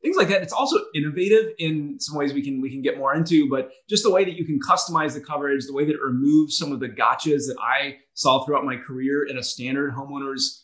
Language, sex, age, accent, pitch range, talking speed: English, male, 20-39, American, 135-155 Hz, 255 wpm